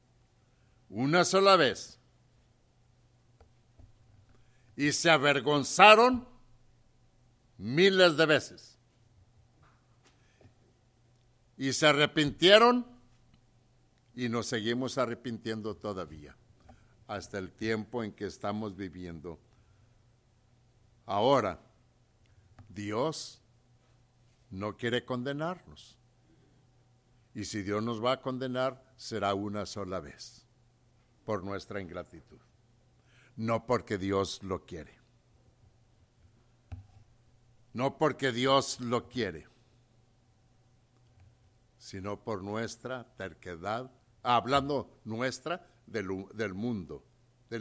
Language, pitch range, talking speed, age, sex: English, 110-125 Hz, 80 wpm, 60-79, male